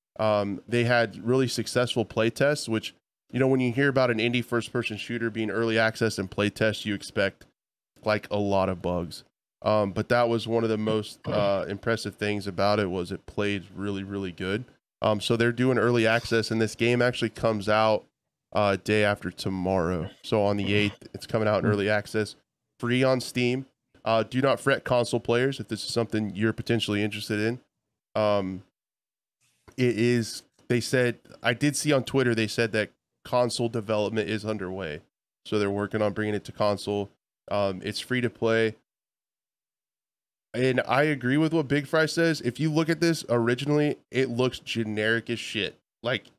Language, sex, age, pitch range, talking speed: English, male, 20-39, 105-125 Hz, 180 wpm